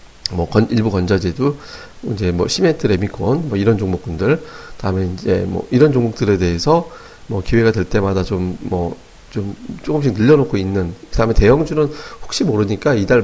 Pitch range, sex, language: 95-130 Hz, male, Korean